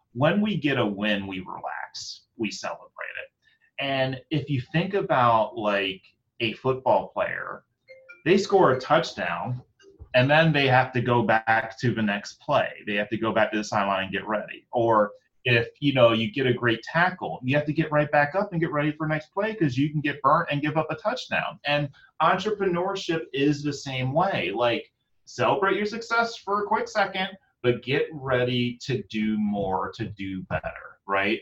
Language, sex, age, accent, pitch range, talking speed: English, male, 30-49, American, 110-155 Hz, 195 wpm